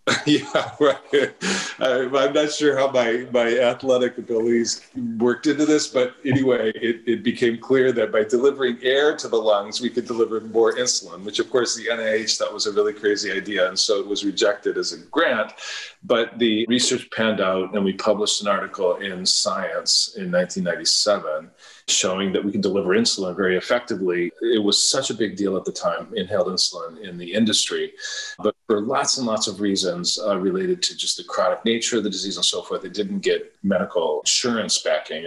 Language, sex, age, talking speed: English, male, 40-59, 190 wpm